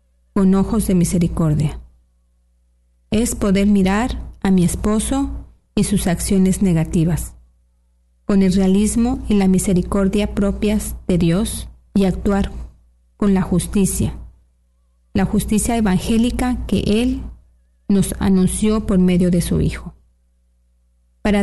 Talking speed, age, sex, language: 115 wpm, 40-59, female, Spanish